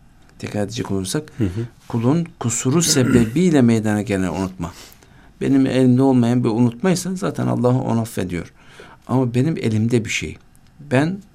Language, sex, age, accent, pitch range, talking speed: Turkish, male, 60-79, native, 110-135 Hz, 120 wpm